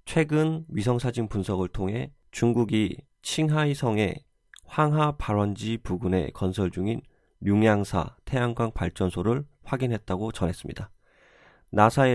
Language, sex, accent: Korean, male, native